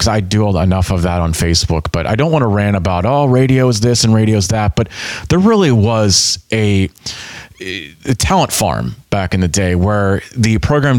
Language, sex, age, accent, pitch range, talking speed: English, male, 30-49, American, 95-125 Hz, 200 wpm